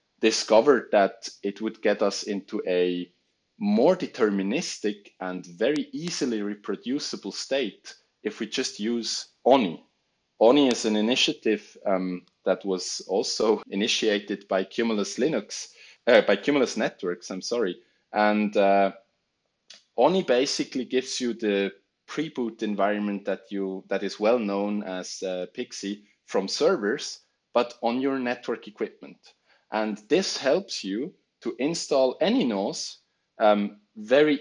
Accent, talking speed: Norwegian, 125 wpm